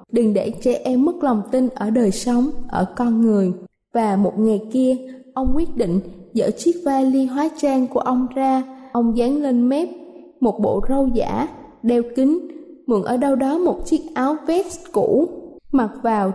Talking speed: 180 wpm